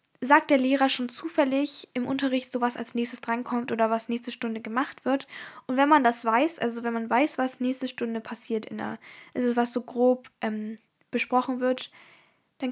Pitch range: 235-270 Hz